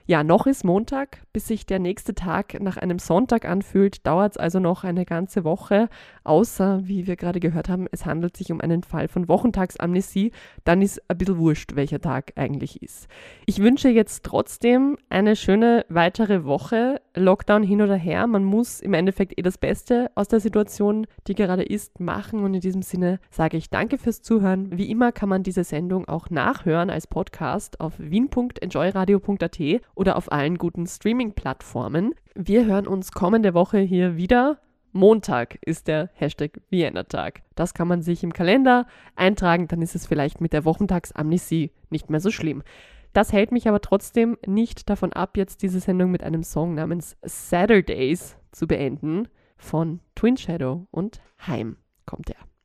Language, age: German, 20-39